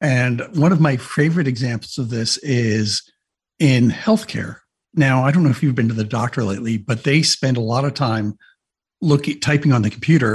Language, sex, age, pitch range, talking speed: English, male, 60-79, 115-145 Hz, 195 wpm